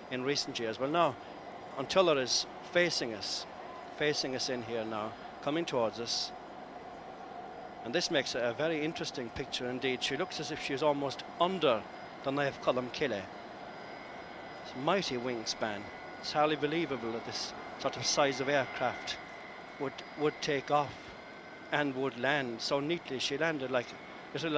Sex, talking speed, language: male, 150 wpm, English